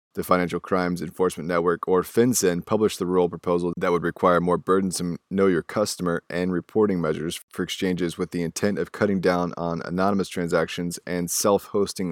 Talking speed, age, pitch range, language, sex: 165 wpm, 20-39, 85-95 Hz, English, male